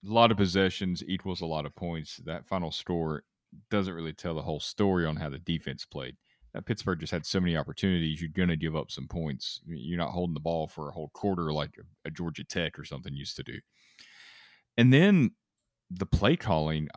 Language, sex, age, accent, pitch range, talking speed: English, male, 30-49, American, 80-105 Hz, 225 wpm